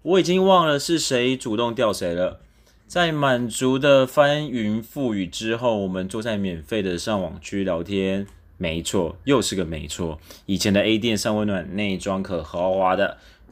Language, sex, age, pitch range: Chinese, male, 30-49, 95-120 Hz